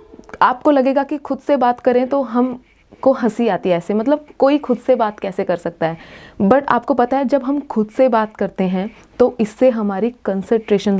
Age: 30-49